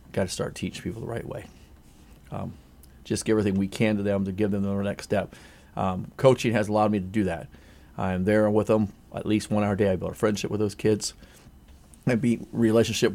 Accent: American